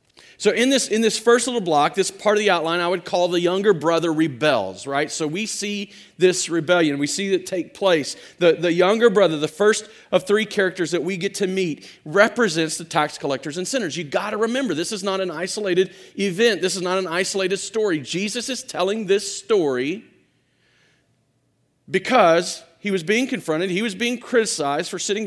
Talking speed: 195 wpm